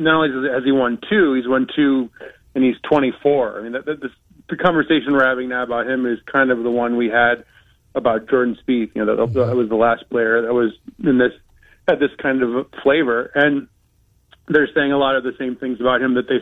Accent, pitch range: American, 120-135 Hz